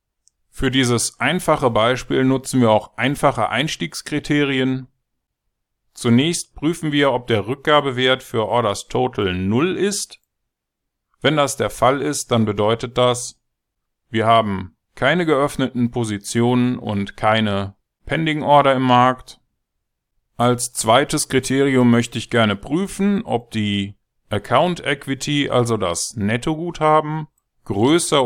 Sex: male